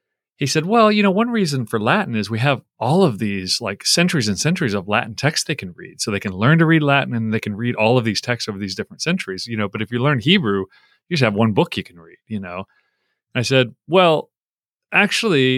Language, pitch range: English, 105-135 Hz